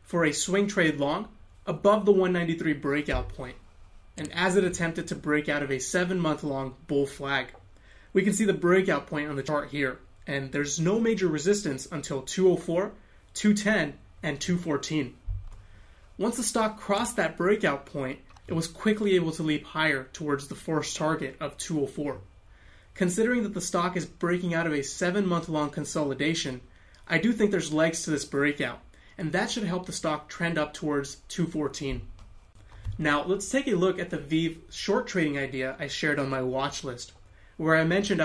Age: 30-49